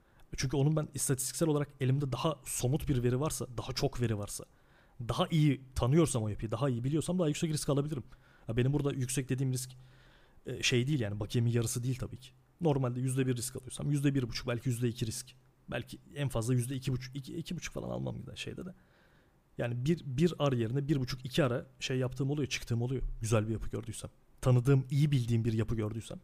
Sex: male